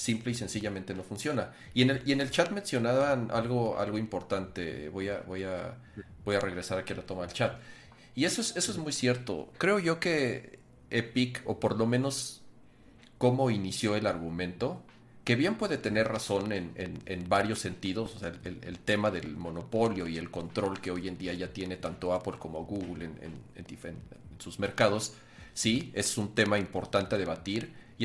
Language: Spanish